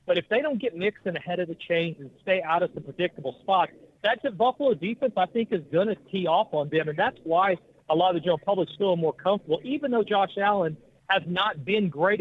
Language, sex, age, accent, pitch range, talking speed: English, male, 40-59, American, 155-200 Hz, 255 wpm